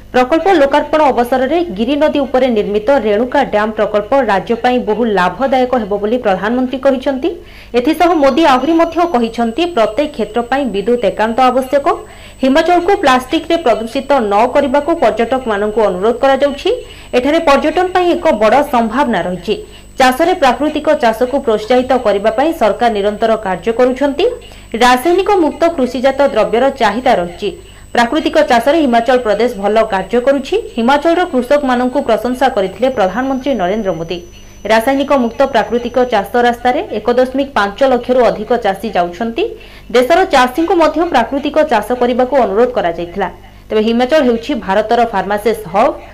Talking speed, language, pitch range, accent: 115 wpm, Hindi, 220-285 Hz, native